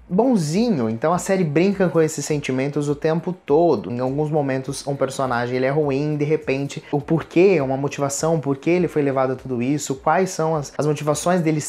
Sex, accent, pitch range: male, Brazilian, 130-170 Hz